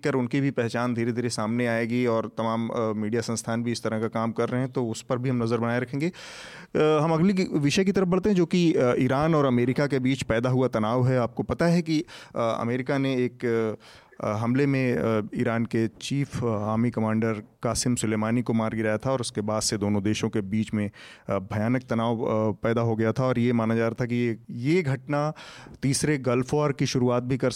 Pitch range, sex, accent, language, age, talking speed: 115-135 Hz, male, native, Hindi, 30-49, 215 wpm